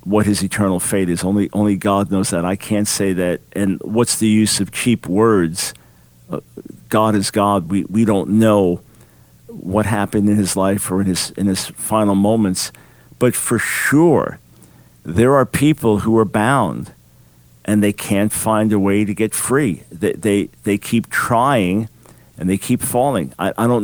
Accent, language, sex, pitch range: American, English, male, 95-115 Hz